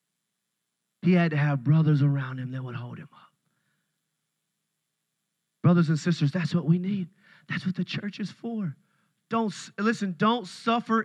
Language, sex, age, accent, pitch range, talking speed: English, male, 30-49, American, 165-205 Hz, 160 wpm